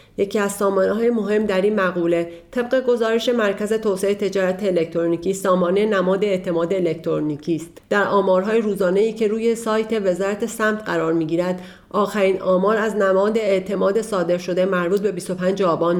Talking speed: 155 wpm